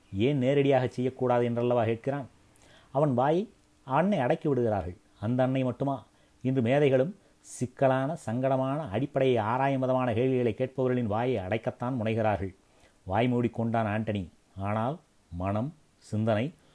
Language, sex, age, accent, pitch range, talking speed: Tamil, male, 30-49, native, 110-135 Hz, 105 wpm